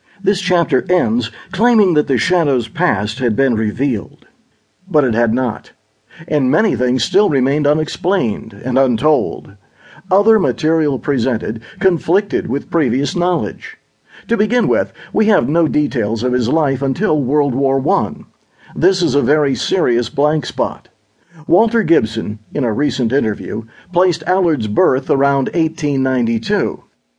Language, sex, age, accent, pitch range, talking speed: English, male, 50-69, American, 120-175 Hz, 135 wpm